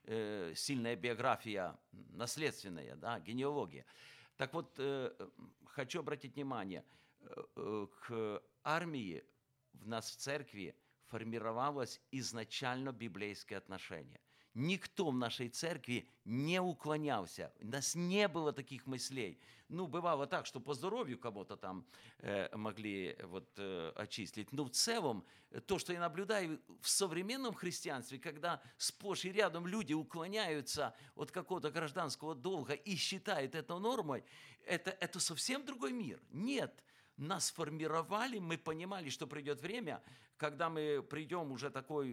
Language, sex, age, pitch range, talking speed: Ukrainian, male, 50-69, 125-170 Hz, 125 wpm